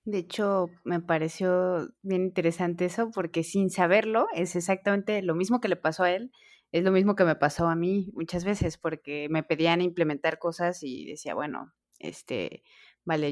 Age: 20-39